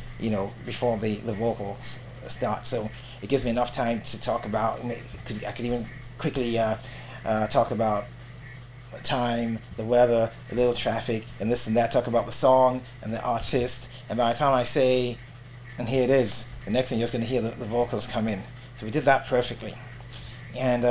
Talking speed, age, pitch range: 205 wpm, 30-49, 115-130 Hz